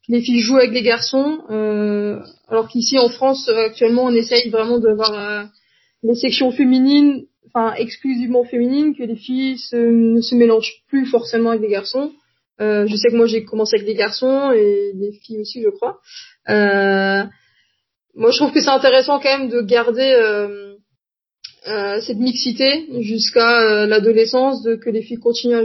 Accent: French